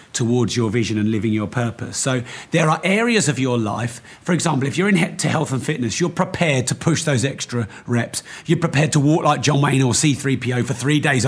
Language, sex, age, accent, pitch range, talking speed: English, male, 40-59, British, 115-155 Hz, 220 wpm